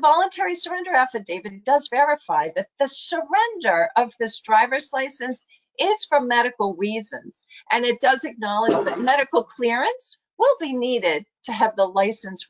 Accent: American